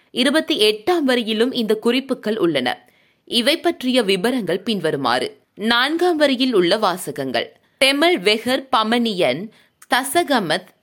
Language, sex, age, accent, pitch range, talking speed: Tamil, female, 20-39, native, 215-275 Hz, 85 wpm